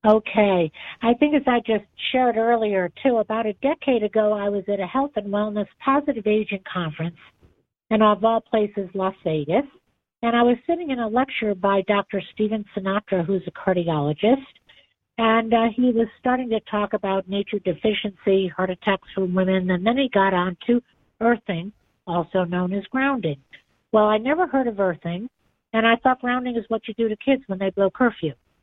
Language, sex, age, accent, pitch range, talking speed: English, female, 50-69, American, 195-240 Hz, 185 wpm